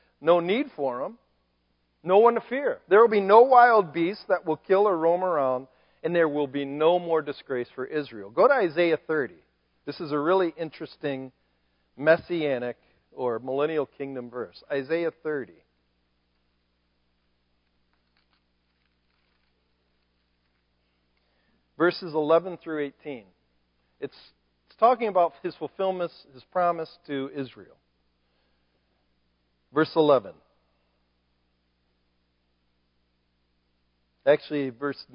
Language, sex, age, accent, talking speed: English, male, 50-69, American, 110 wpm